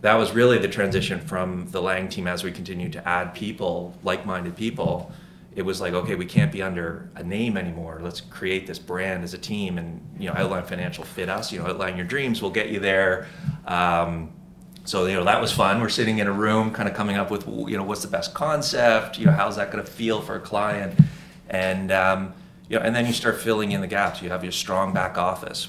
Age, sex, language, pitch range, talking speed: 30-49, male, English, 90-115 Hz, 235 wpm